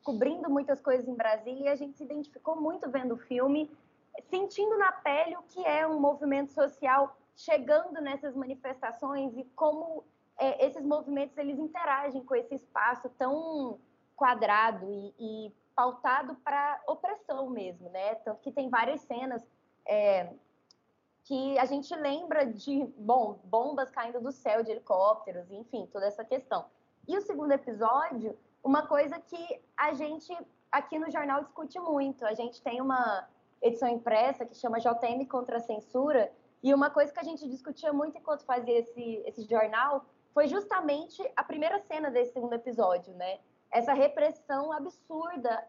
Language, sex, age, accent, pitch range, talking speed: Portuguese, female, 20-39, Brazilian, 240-305 Hz, 155 wpm